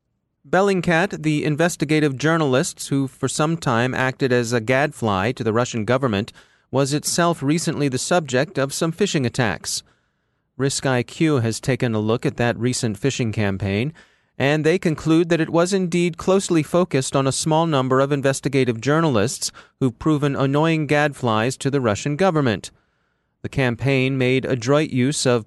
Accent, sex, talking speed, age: American, male, 155 wpm, 30-49